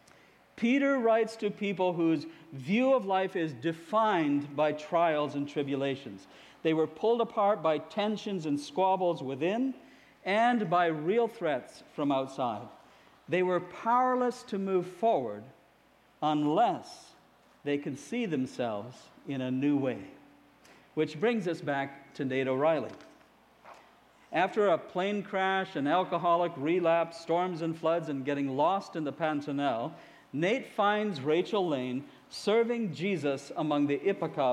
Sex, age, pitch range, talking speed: male, 50-69, 150-205 Hz, 130 wpm